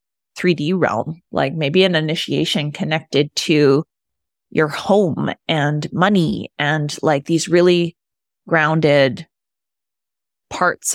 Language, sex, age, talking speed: English, female, 20-39, 100 wpm